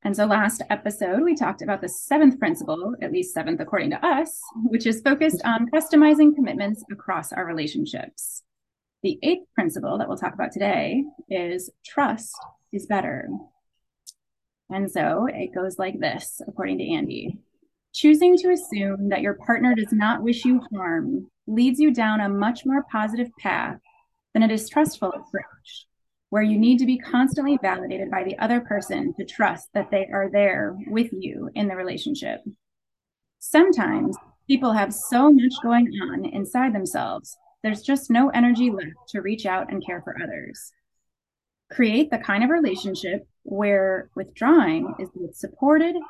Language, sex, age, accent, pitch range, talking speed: English, female, 20-39, American, 205-300 Hz, 160 wpm